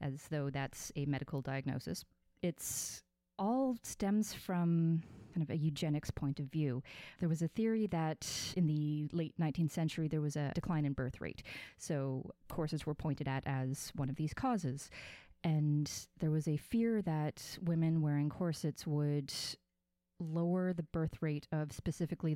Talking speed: 160 wpm